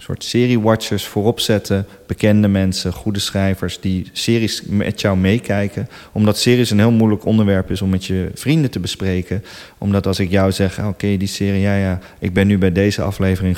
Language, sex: Dutch, male